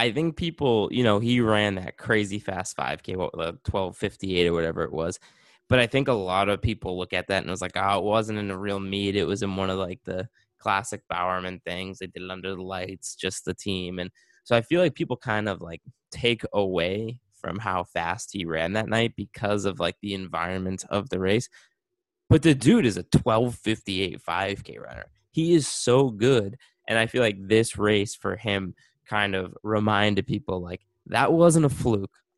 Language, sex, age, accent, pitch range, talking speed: English, male, 20-39, American, 95-135 Hz, 205 wpm